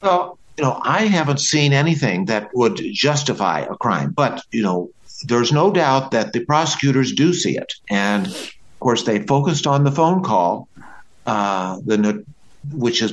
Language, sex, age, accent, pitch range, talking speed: English, male, 60-79, American, 120-155 Hz, 165 wpm